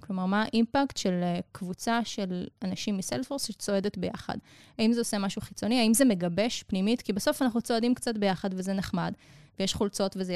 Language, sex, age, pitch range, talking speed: Hebrew, female, 20-39, 180-220 Hz, 175 wpm